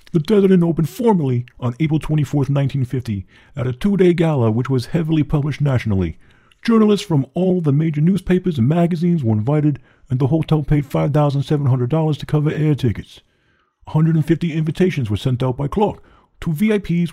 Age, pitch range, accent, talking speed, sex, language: 50-69, 125-170 Hz, American, 160 wpm, male, English